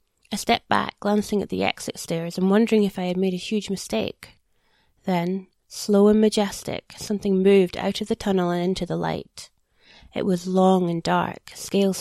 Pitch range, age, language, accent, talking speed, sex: 180-205 Hz, 20-39, English, British, 185 wpm, female